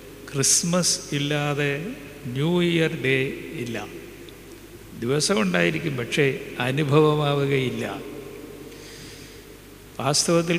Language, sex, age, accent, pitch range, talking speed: Malayalam, male, 60-79, native, 135-155 Hz, 55 wpm